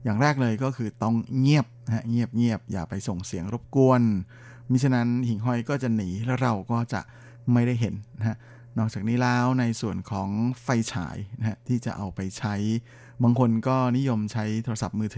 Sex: male